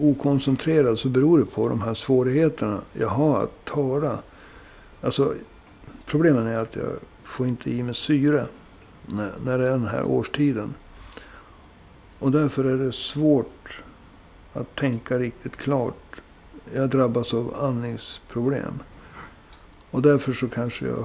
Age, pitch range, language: 60-79, 110-140 Hz, Swedish